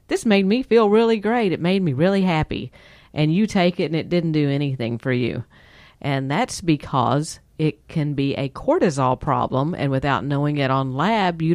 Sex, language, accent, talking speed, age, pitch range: female, English, American, 195 wpm, 50-69, 130-155 Hz